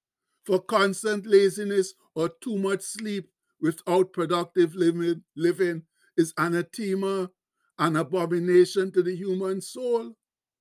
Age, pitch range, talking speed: 60-79, 170-195 Hz, 105 wpm